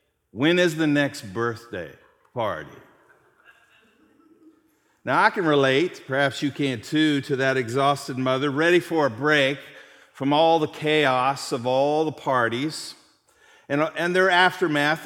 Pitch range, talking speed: 140-175 Hz, 135 wpm